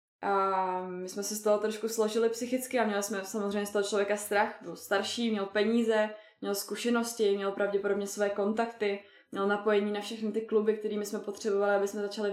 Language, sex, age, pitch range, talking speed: Czech, female, 20-39, 205-235 Hz, 190 wpm